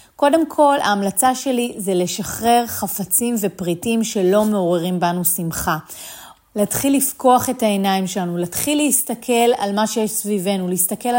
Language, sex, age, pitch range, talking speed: Hebrew, female, 30-49, 205-265 Hz, 130 wpm